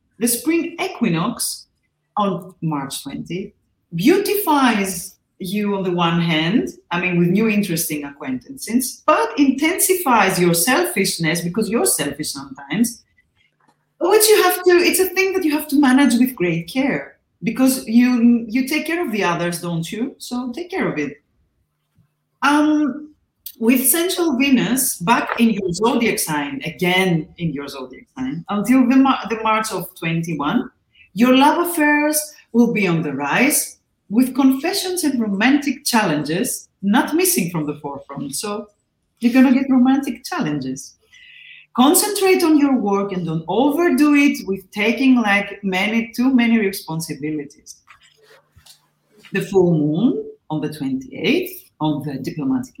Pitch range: 175-285 Hz